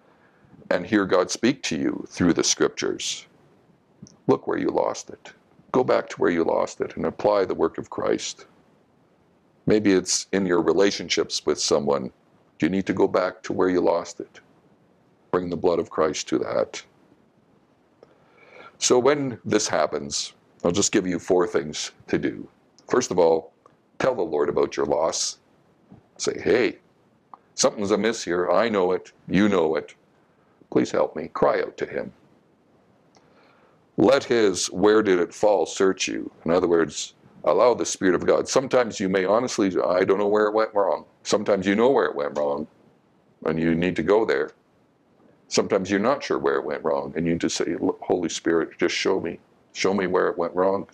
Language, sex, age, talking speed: English, male, 60-79, 180 wpm